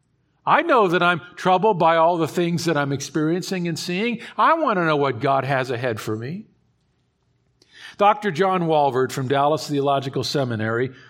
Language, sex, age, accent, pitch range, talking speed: English, male, 50-69, American, 140-215 Hz, 170 wpm